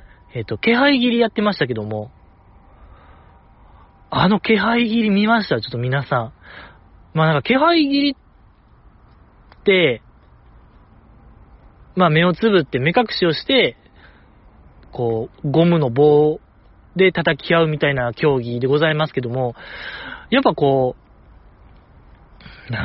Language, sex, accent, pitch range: Japanese, male, native, 120-200 Hz